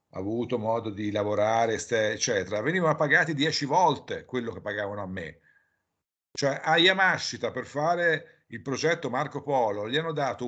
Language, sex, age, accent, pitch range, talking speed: Italian, male, 50-69, native, 120-150 Hz, 150 wpm